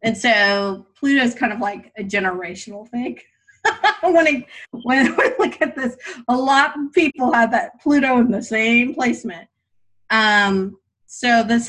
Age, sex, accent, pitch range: 30-49, female, American, 170-220 Hz